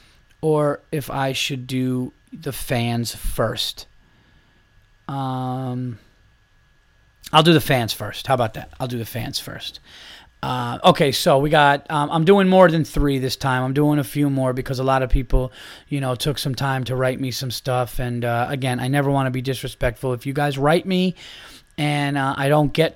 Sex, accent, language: male, American, English